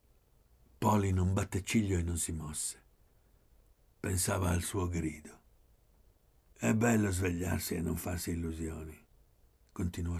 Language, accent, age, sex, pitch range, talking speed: Italian, native, 60-79, male, 85-110 Hz, 120 wpm